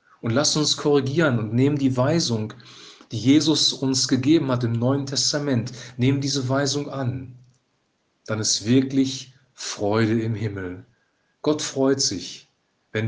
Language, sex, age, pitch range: German, male, 40-59, 120-140 Hz